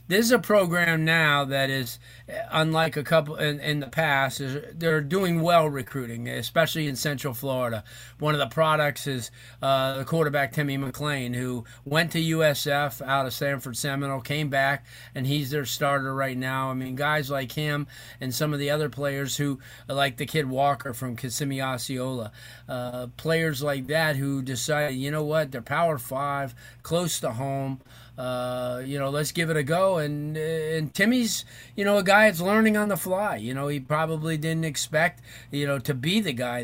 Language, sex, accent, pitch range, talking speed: English, male, American, 130-160 Hz, 185 wpm